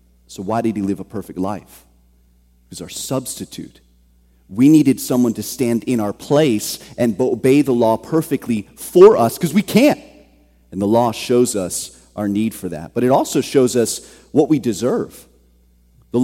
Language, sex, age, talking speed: English, male, 30-49, 175 wpm